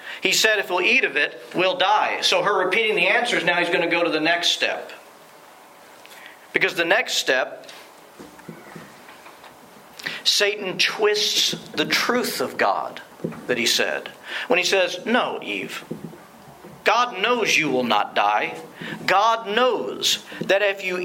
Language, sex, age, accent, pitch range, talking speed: English, male, 50-69, American, 180-255 Hz, 150 wpm